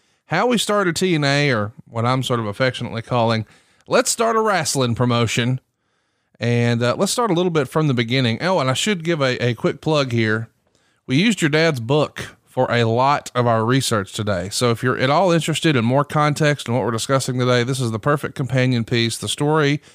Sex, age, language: male, 30-49, English